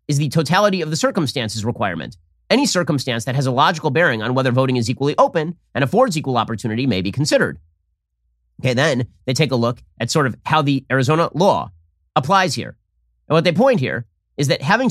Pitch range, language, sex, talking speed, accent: 115-170 Hz, English, male, 200 wpm, American